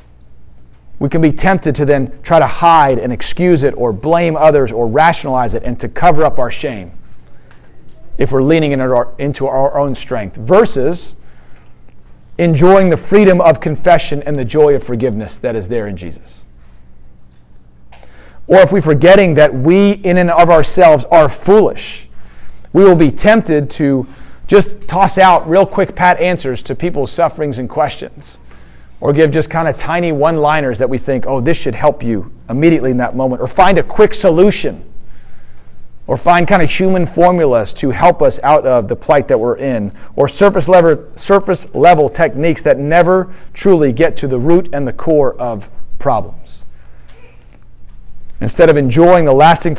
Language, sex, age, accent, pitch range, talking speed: English, male, 40-59, American, 120-170 Hz, 165 wpm